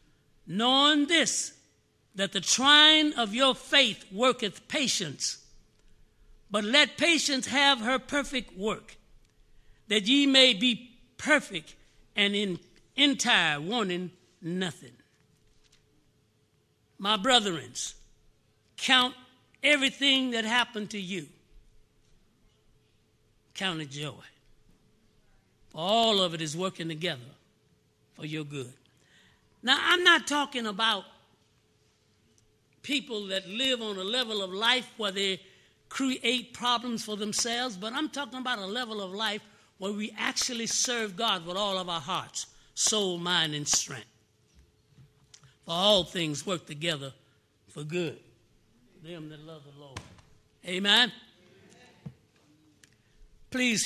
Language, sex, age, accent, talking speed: English, male, 60-79, American, 115 wpm